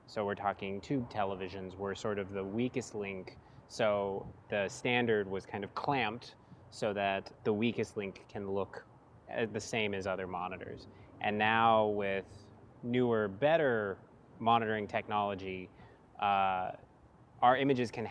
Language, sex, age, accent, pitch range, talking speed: English, male, 20-39, American, 100-125 Hz, 135 wpm